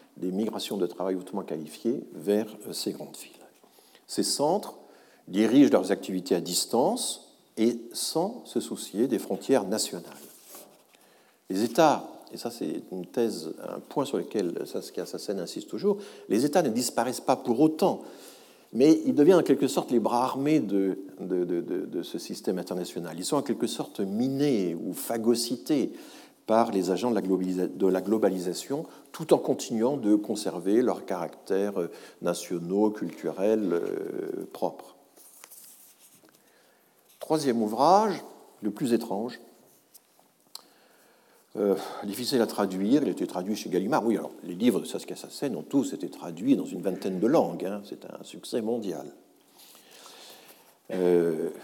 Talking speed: 145 wpm